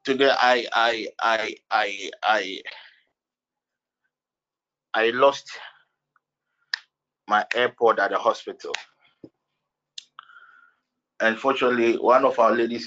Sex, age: male, 30-49